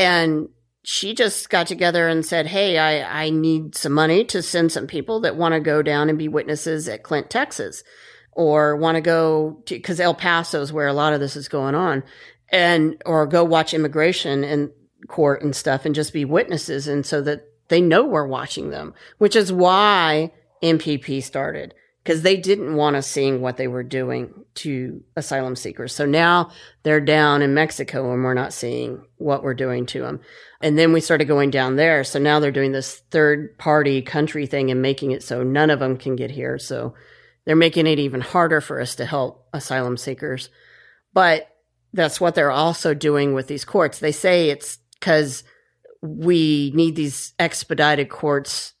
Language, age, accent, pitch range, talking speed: English, 40-59, American, 140-165 Hz, 190 wpm